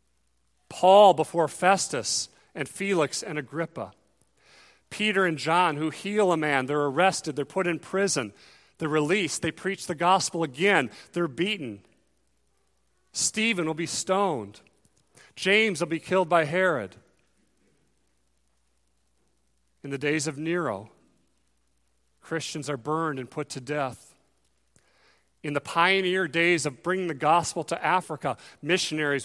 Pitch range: 135-185 Hz